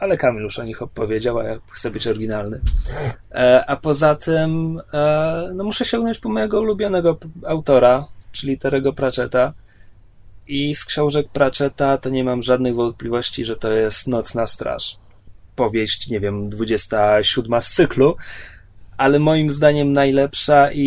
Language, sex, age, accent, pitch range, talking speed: Polish, male, 20-39, native, 120-145 Hz, 140 wpm